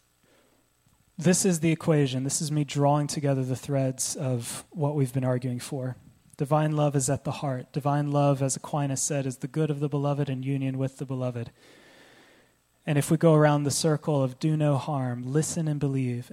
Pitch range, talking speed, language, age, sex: 125-150 Hz, 195 wpm, English, 20-39, male